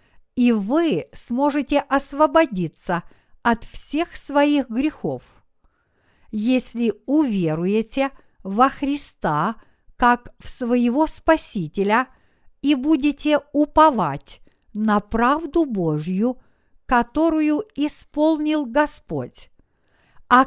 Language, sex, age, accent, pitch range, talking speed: Russian, female, 50-69, native, 210-295 Hz, 75 wpm